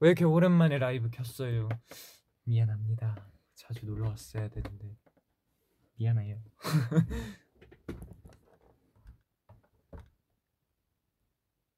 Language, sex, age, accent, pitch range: Korean, male, 20-39, native, 110-165 Hz